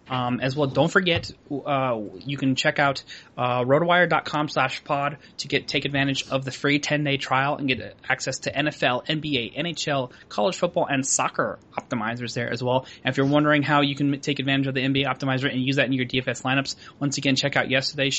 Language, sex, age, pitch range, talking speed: English, male, 20-39, 125-145 Hz, 210 wpm